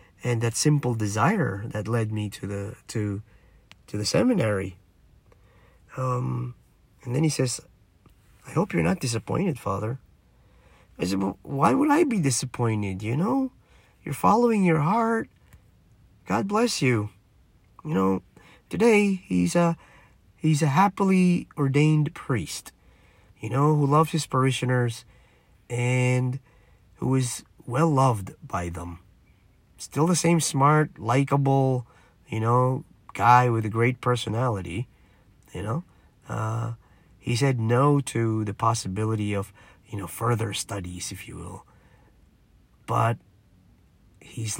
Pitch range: 100-140 Hz